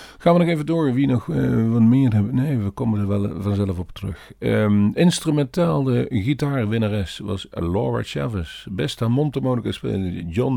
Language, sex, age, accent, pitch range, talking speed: Dutch, male, 50-69, Dutch, 90-120 Hz, 170 wpm